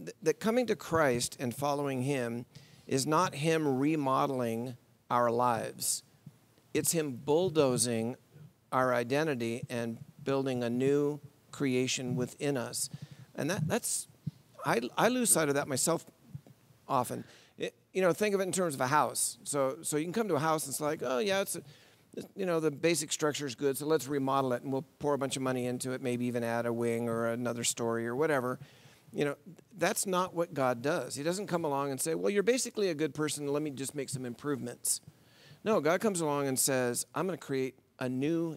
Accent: American